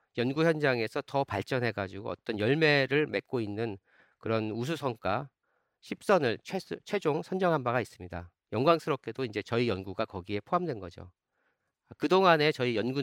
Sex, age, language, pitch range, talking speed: male, 40-59, English, 105-150 Hz, 130 wpm